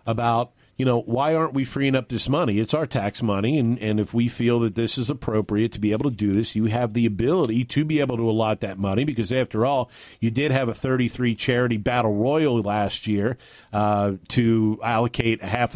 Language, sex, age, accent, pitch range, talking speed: English, male, 50-69, American, 110-140 Hz, 215 wpm